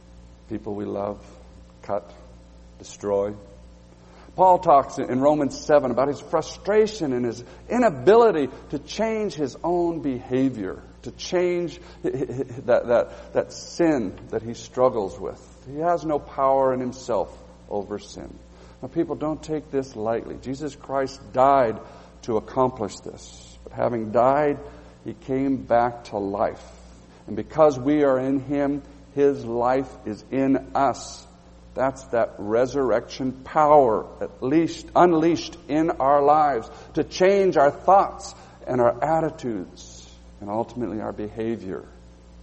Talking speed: 130 wpm